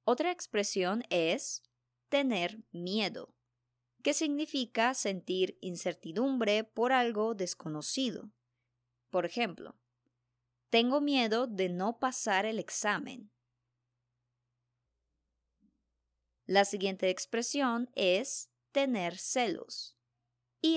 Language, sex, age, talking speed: Spanish, male, 20-39, 80 wpm